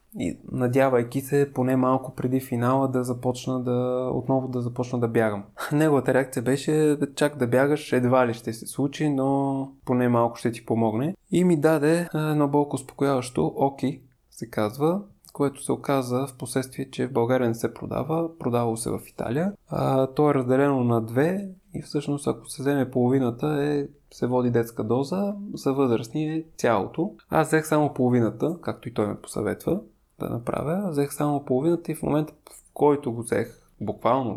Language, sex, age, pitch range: Bulgarian, male, 20-39, 120-145 Hz